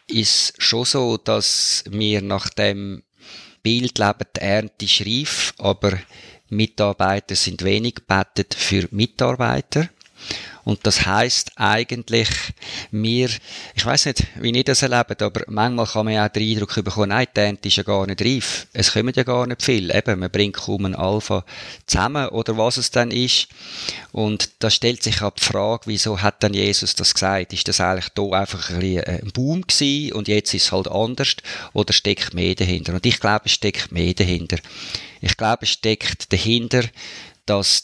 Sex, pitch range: male, 95-115 Hz